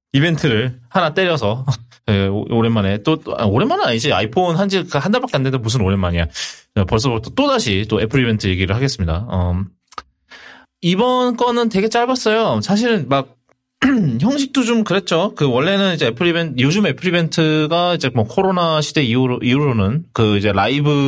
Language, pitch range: Korean, 110-170 Hz